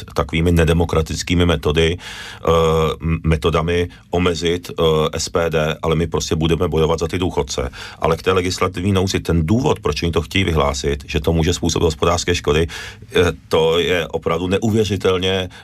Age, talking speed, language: 40-59, 140 wpm, Czech